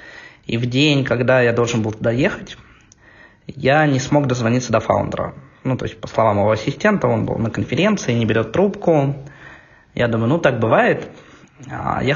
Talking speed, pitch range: 165 wpm, 110-140 Hz